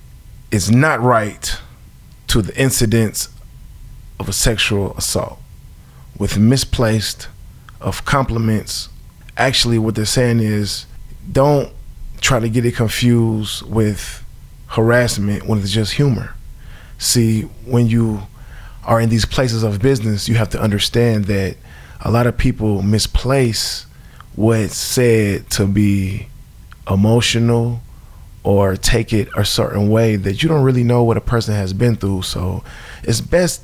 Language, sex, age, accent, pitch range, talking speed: English, male, 20-39, American, 100-120 Hz, 135 wpm